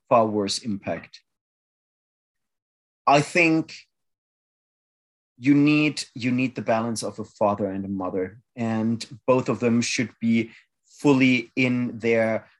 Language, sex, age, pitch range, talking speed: English, male, 30-49, 105-125 Hz, 120 wpm